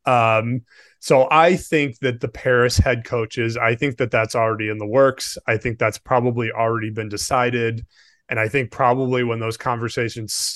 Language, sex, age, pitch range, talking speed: English, male, 20-39, 110-130 Hz, 175 wpm